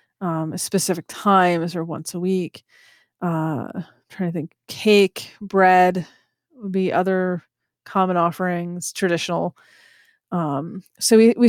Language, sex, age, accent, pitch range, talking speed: English, female, 30-49, American, 175-205 Hz, 125 wpm